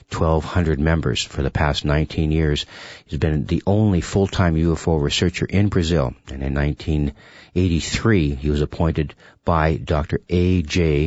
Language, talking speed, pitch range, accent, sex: English, 135 wpm, 75-90 Hz, American, male